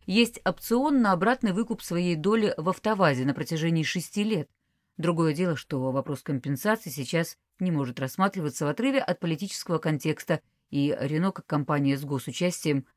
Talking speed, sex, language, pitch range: 155 wpm, female, Russian, 145-195 Hz